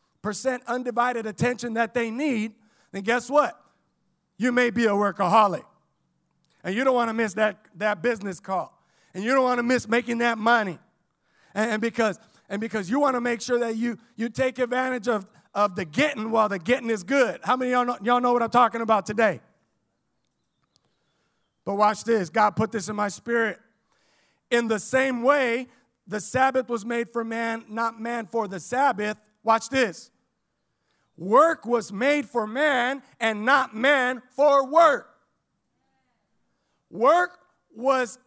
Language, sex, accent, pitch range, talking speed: English, male, American, 225-275 Hz, 170 wpm